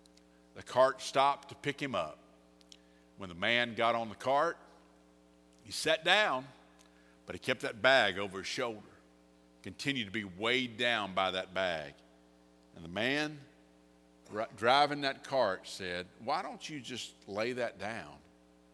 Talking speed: 150 wpm